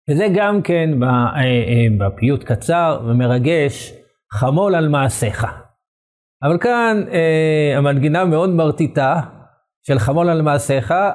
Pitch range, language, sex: 135-185 Hz, Hebrew, male